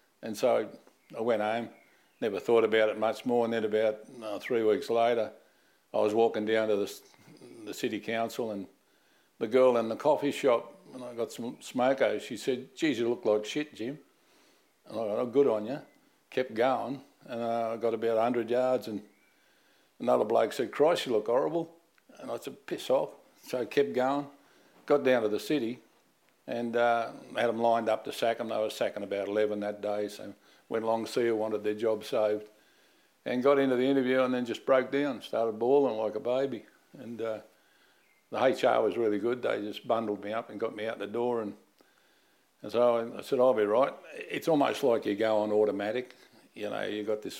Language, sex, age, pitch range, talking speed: English, male, 60-79, 110-125 Hz, 210 wpm